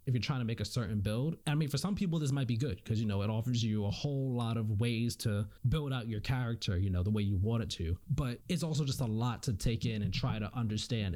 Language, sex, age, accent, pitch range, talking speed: English, male, 20-39, American, 110-155 Hz, 290 wpm